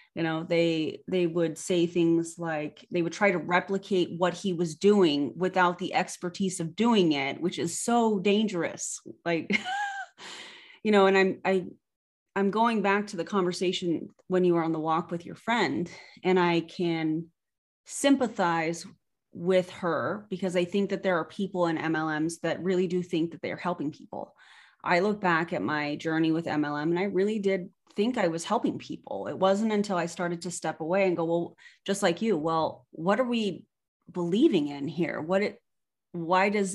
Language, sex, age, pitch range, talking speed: English, female, 30-49, 170-200 Hz, 185 wpm